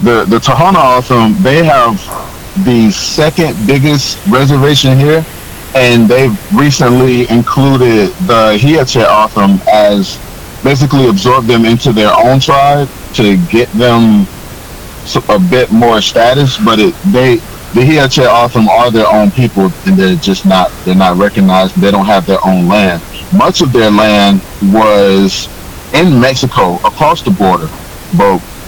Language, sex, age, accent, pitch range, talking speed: English, male, 30-49, American, 100-135 Hz, 140 wpm